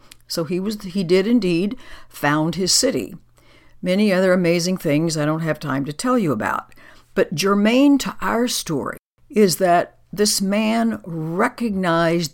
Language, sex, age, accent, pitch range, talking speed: English, female, 60-79, American, 150-200 Hz, 150 wpm